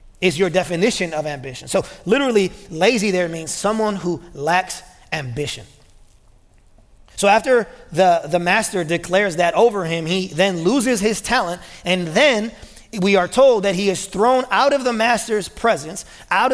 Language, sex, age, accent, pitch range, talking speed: English, male, 30-49, American, 160-205 Hz, 155 wpm